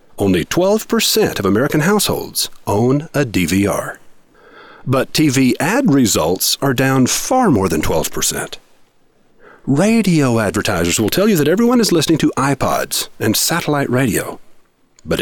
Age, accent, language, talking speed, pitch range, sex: 50-69, American, English, 130 wpm, 115-180 Hz, male